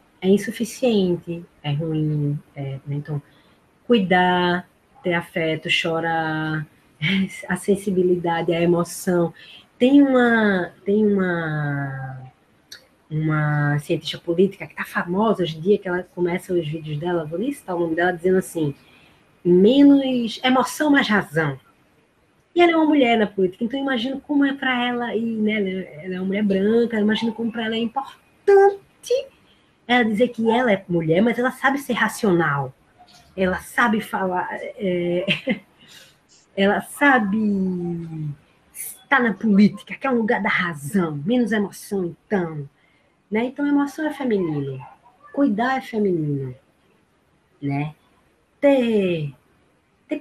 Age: 20-39